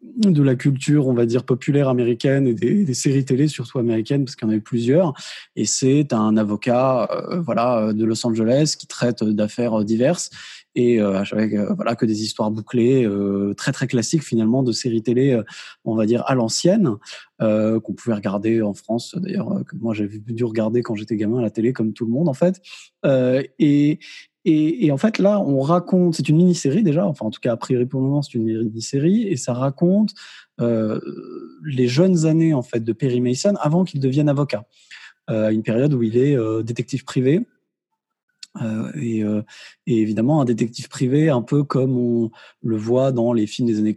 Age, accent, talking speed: 20-39, French, 205 wpm